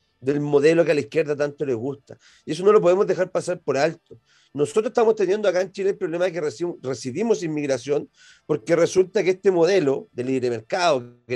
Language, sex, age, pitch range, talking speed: Spanish, male, 40-59, 135-185 Hz, 210 wpm